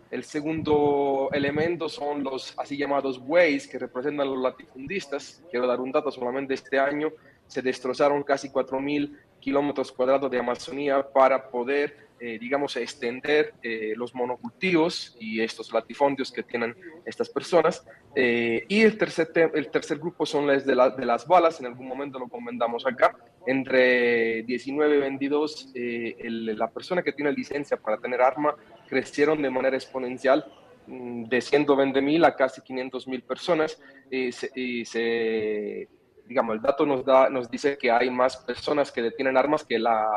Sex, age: male, 30-49